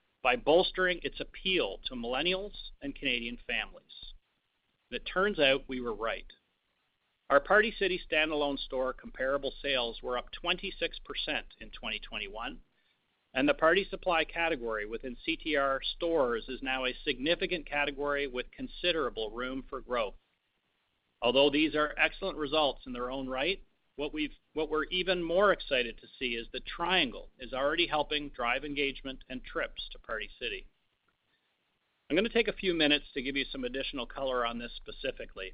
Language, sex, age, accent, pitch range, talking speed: English, male, 40-59, American, 130-185 Hz, 155 wpm